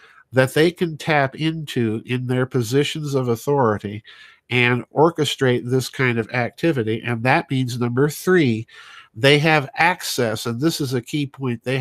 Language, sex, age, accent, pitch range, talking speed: English, male, 50-69, American, 120-150 Hz, 160 wpm